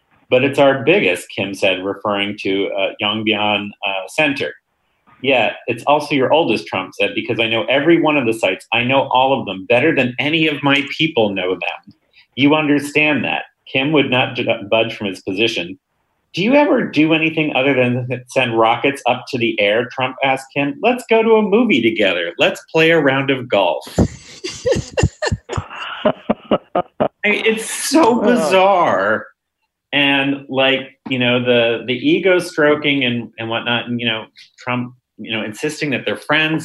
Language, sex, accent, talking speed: English, male, American, 170 wpm